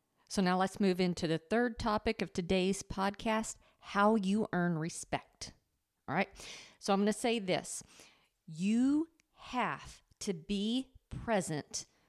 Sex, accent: female, American